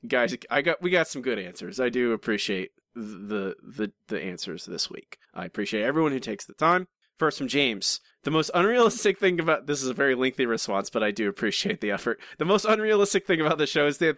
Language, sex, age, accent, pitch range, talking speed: English, male, 30-49, American, 120-175 Hz, 225 wpm